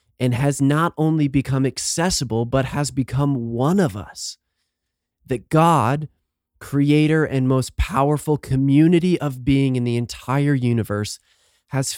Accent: American